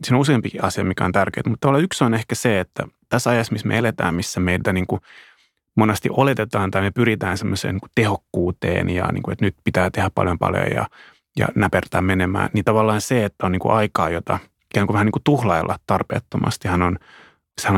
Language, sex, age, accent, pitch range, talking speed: Finnish, male, 30-49, native, 95-115 Hz, 190 wpm